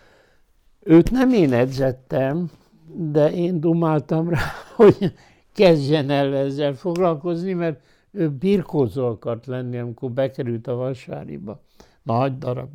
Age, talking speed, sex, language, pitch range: 60-79, 115 wpm, male, Hungarian, 135-165 Hz